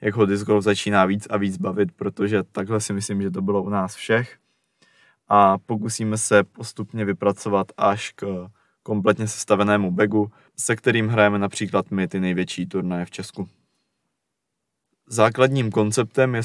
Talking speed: 155 wpm